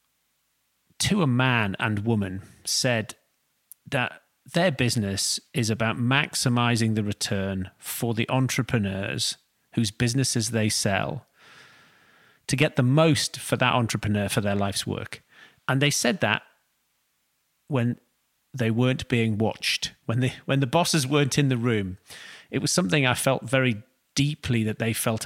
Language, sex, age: English, male, 30-49